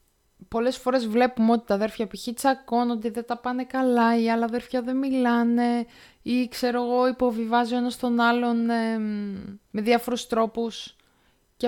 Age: 20-39